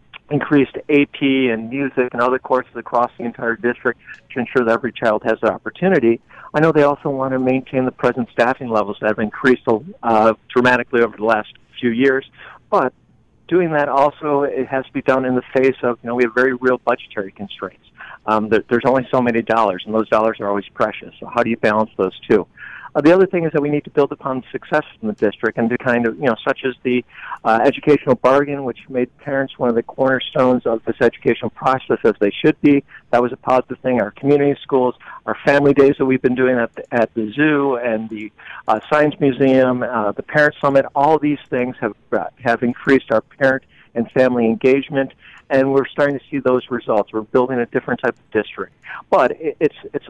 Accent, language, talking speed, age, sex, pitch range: American, English, 215 wpm, 50-69, male, 115-140 Hz